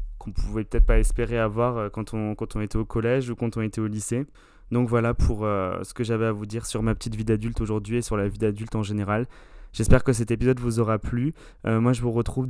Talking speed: 265 wpm